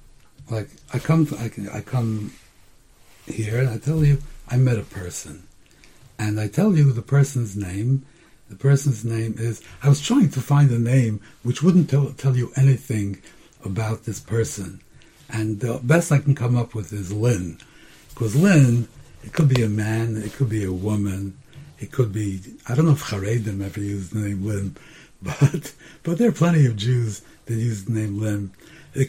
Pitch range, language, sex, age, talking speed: 105-140 Hz, English, male, 60-79, 185 wpm